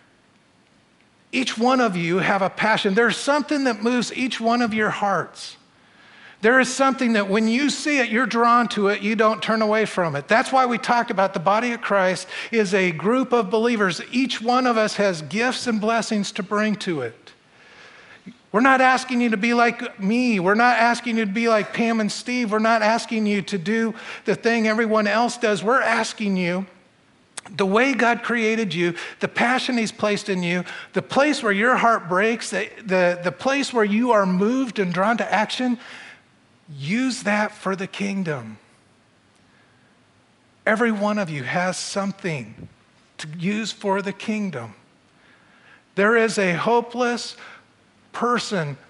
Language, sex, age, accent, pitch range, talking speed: English, male, 50-69, American, 190-235 Hz, 175 wpm